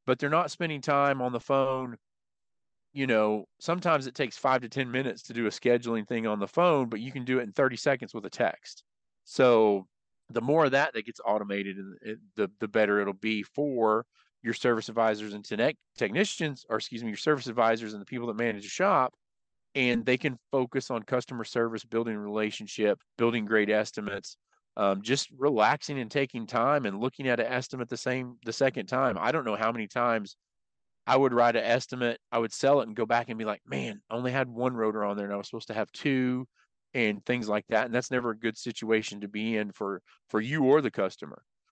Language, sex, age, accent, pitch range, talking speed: English, male, 40-59, American, 105-130 Hz, 220 wpm